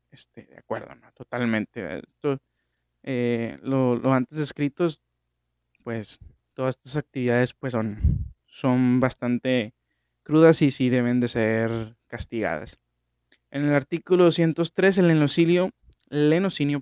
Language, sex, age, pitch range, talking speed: Spanish, male, 20-39, 115-150 Hz, 120 wpm